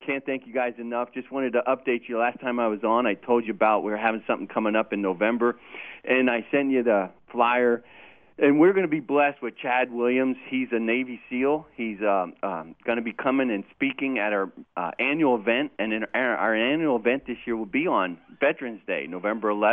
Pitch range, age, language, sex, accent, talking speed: 110-130 Hz, 40-59, English, male, American, 220 wpm